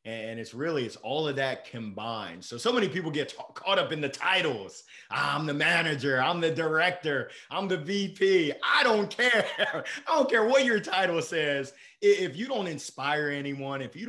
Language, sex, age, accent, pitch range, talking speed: English, male, 30-49, American, 140-205 Hz, 185 wpm